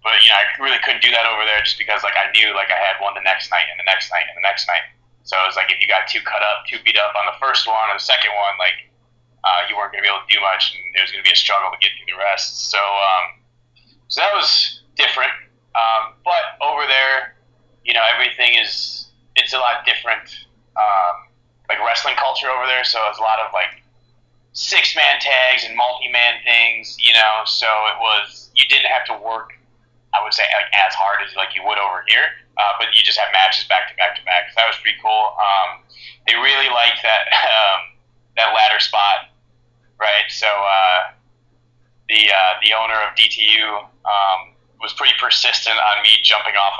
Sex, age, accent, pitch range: male, 30-49, American, 110-125 Hz